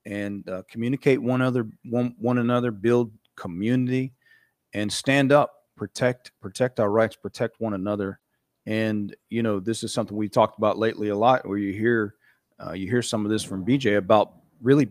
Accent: American